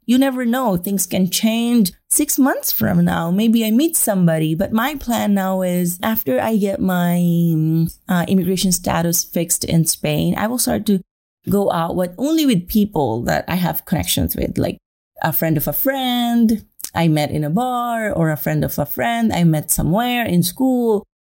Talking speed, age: 185 wpm, 30-49